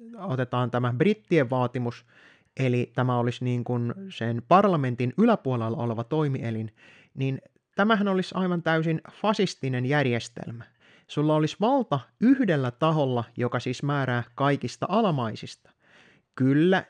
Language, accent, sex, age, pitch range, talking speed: Finnish, native, male, 30-49, 120-170 Hz, 115 wpm